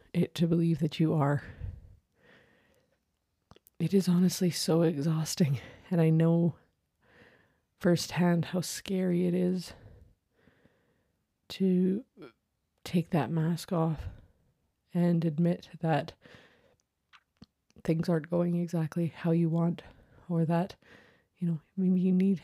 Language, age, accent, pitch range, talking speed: English, 30-49, American, 155-180 Hz, 105 wpm